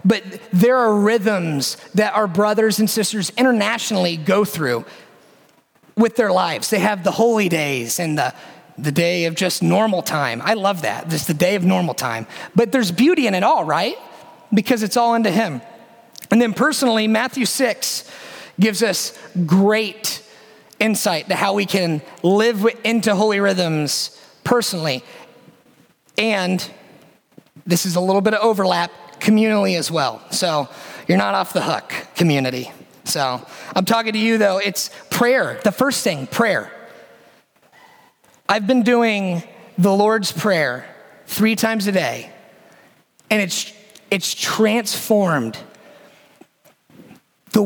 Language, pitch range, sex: English, 175-225 Hz, male